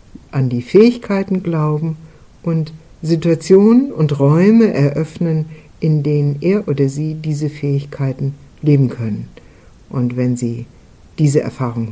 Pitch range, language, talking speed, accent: 125-160 Hz, German, 115 wpm, German